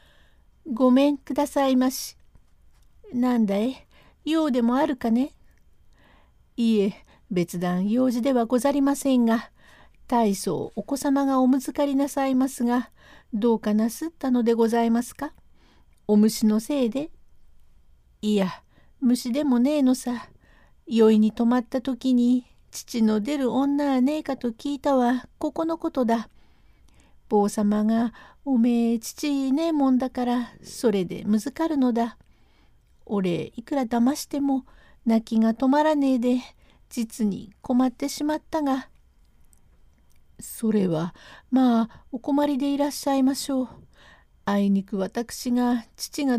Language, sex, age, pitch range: Japanese, female, 50-69, 220-275 Hz